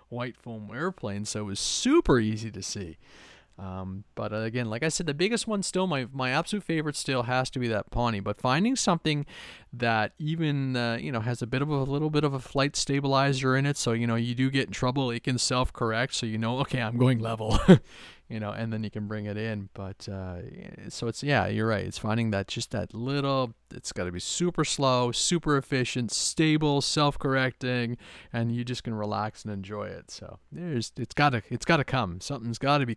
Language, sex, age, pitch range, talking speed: English, male, 30-49, 105-140 Hz, 225 wpm